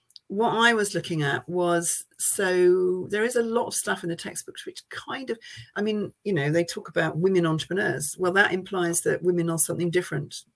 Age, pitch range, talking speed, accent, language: 40-59, 170-205 Hz, 205 wpm, British, English